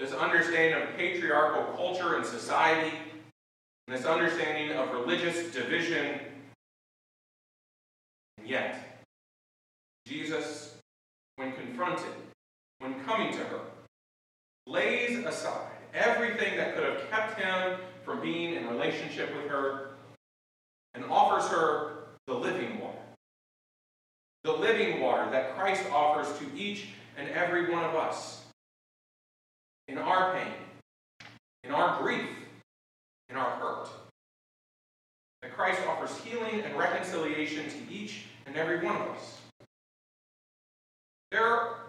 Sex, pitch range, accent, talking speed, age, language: male, 130-185 Hz, American, 110 wpm, 40-59, English